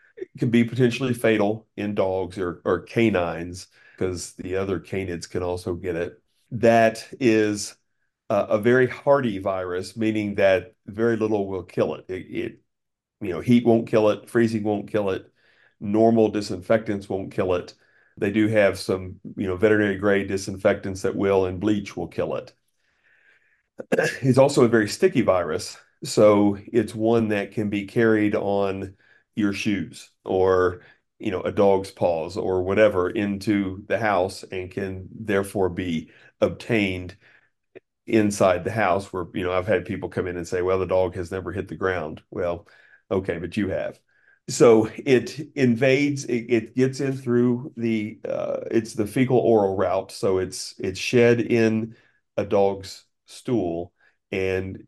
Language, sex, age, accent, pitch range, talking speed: English, male, 40-59, American, 95-115 Hz, 160 wpm